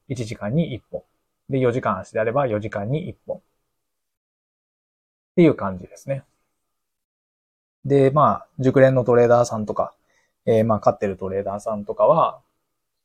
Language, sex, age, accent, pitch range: Japanese, male, 20-39, native, 105-140 Hz